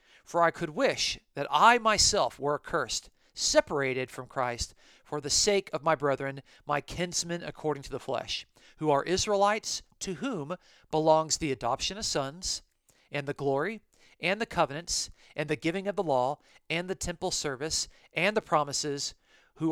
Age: 40-59